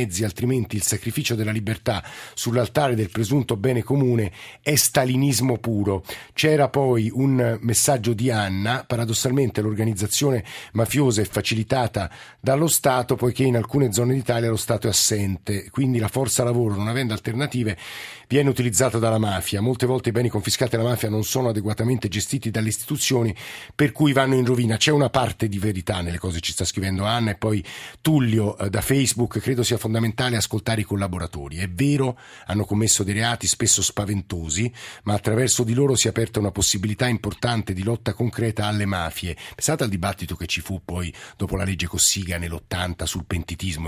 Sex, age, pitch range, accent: male, 50-69, 100-125 Hz, native